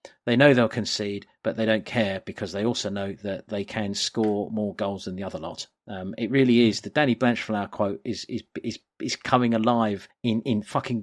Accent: British